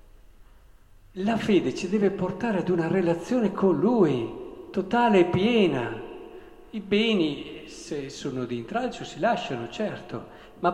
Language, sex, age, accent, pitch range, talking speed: Italian, male, 50-69, native, 145-205 Hz, 130 wpm